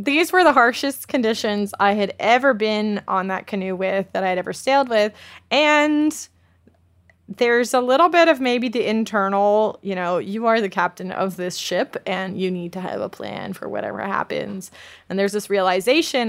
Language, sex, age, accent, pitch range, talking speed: English, female, 20-39, American, 185-220 Hz, 190 wpm